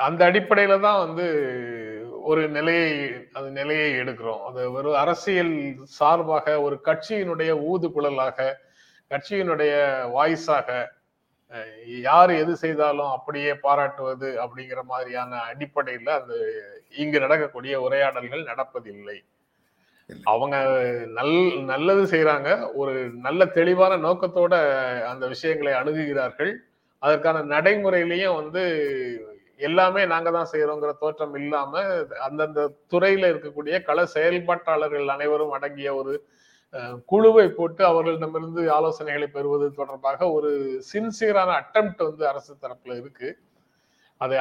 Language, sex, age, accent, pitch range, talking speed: Tamil, male, 30-49, native, 140-180 Hz, 100 wpm